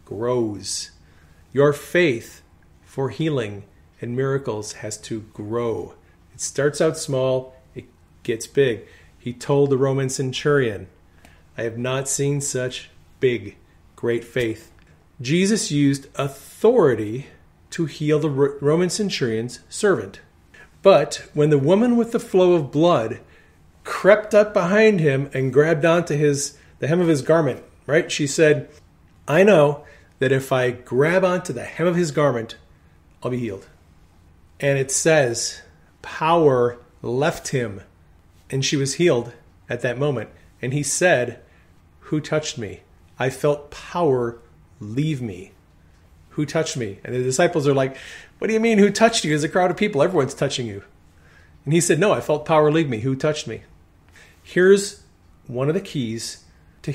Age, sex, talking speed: 40-59, male, 150 wpm